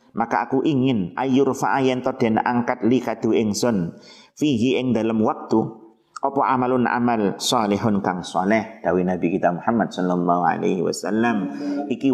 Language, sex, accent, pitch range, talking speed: Indonesian, male, native, 105-140 Hz, 140 wpm